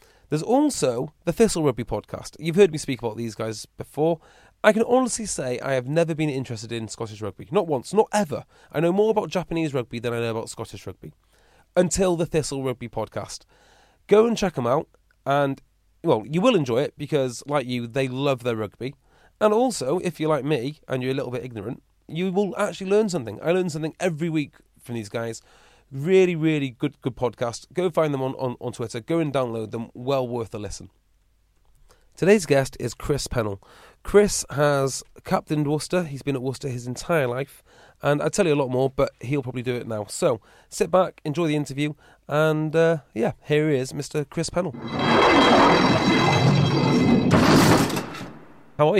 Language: English